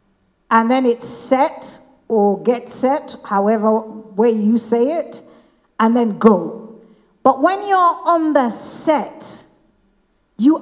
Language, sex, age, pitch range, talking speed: English, female, 50-69, 235-335 Hz, 125 wpm